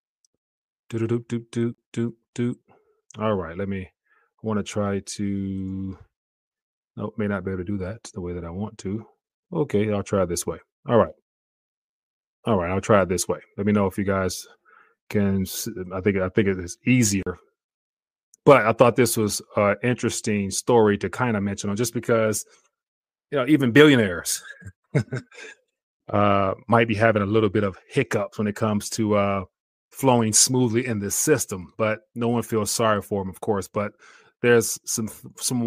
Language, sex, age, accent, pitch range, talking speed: English, male, 30-49, American, 100-120 Hz, 185 wpm